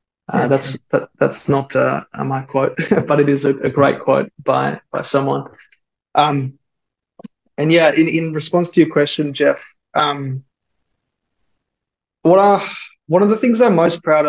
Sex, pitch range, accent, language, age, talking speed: male, 135-150 Hz, Australian, English, 20-39, 160 wpm